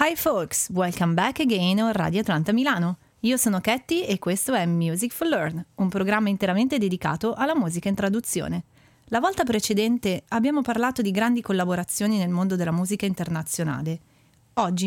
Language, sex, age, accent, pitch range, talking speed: Italian, female, 30-49, native, 175-235 Hz, 160 wpm